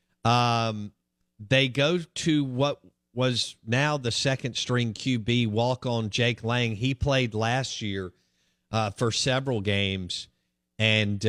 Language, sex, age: English, male, 50-69